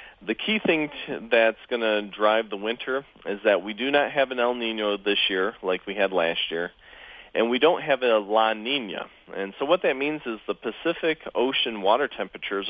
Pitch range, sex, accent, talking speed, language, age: 105-135 Hz, male, American, 210 wpm, English, 40-59